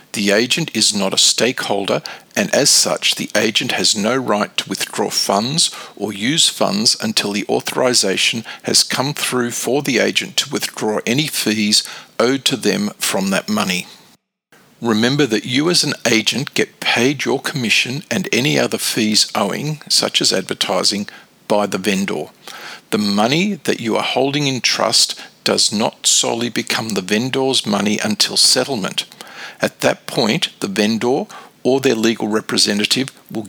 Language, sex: English, male